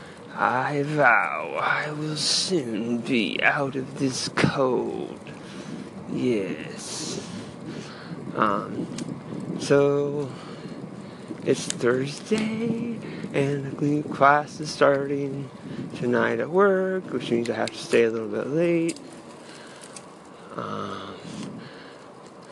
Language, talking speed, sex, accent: English, 90 wpm, male, American